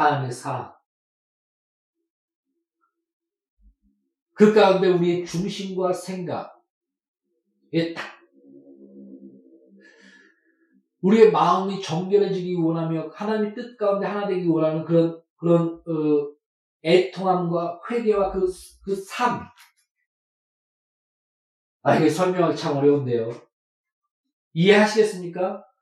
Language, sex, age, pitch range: Korean, male, 40-59, 170-240 Hz